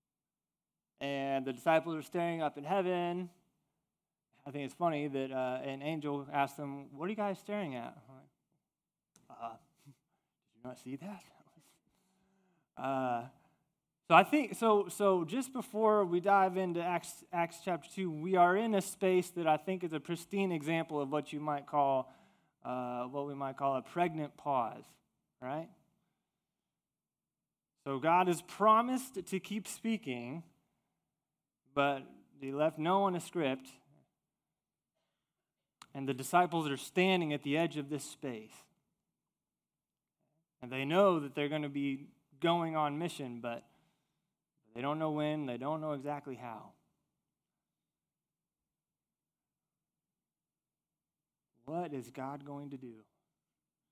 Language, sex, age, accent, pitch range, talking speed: English, male, 20-39, American, 140-180 Hz, 135 wpm